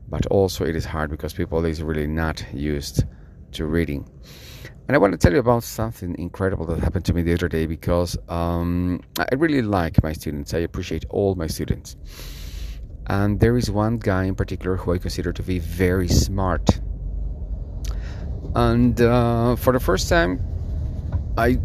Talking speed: 170 wpm